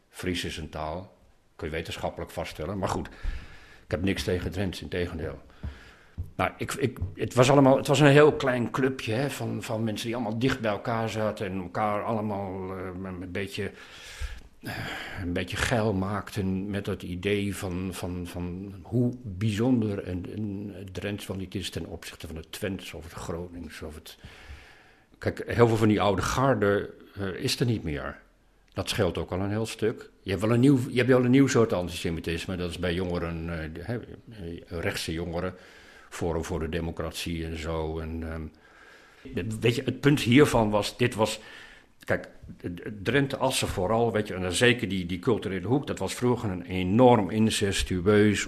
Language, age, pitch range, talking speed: Dutch, 50-69, 90-110 Hz, 180 wpm